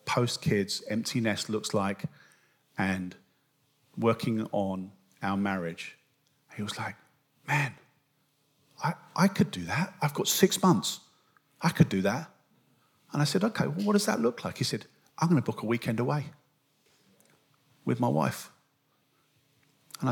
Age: 40-59